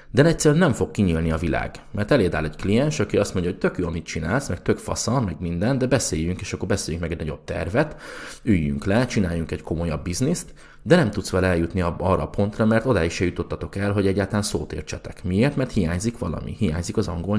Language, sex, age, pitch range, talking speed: Hungarian, male, 30-49, 80-105 Hz, 215 wpm